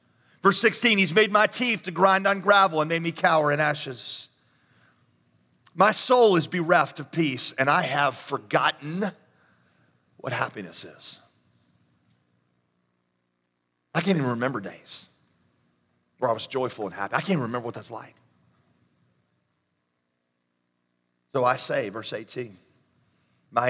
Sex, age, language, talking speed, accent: male, 40-59, English, 135 wpm, American